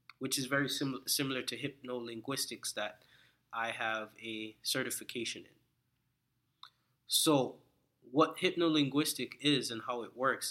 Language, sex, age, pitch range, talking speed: English, male, 20-39, 120-145 Hz, 115 wpm